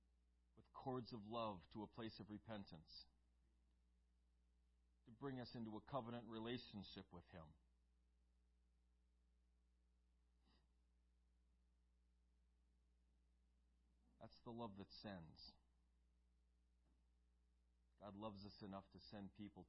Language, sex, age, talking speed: English, male, 40-59, 90 wpm